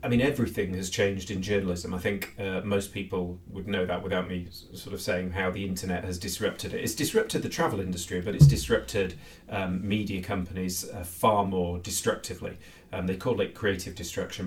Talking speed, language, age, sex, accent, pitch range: 195 wpm, English, 30-49, male, British, 90-100 Hz